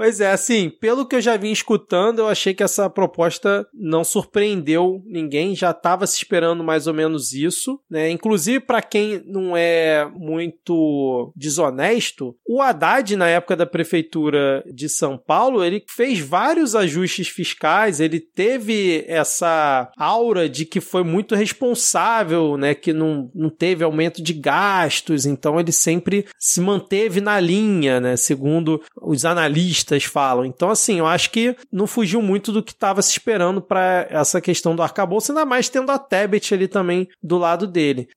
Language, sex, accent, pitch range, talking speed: Portuguese, male, Brazilian, 160-210 Hz, 165 wpm